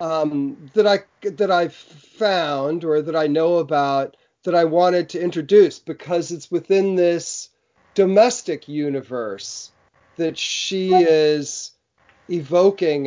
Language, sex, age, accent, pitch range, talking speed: English, male, 40-59, American, 140-185 Hz, 120 wpm